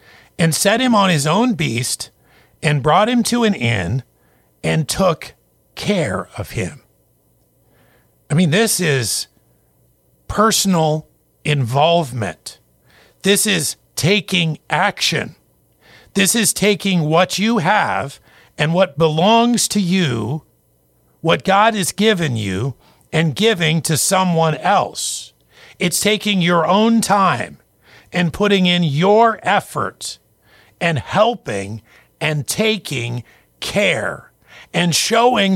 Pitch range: 120-195 Hz